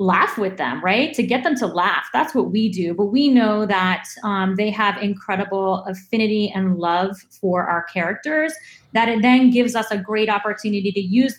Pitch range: 190-220 Hz